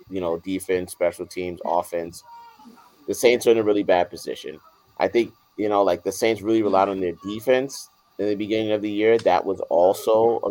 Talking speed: 205 wpm